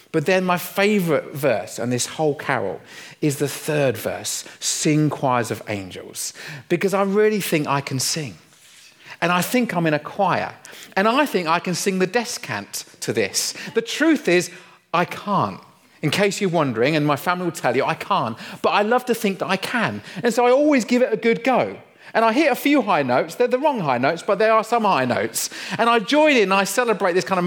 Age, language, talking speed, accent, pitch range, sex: 40-59, English, 225 wpm, British, 155-210 Hz, male